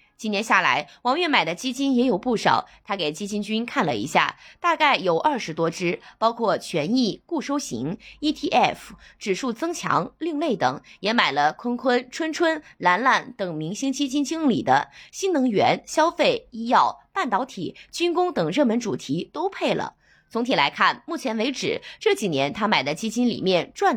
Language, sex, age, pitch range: Chinese, female, 20-39, 205-300 Hz